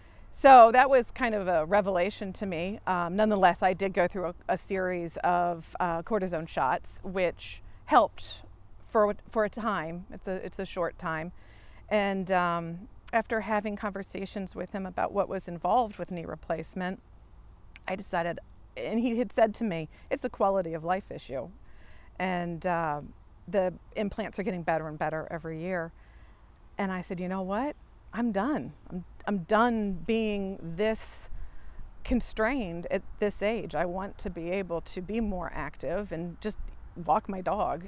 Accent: American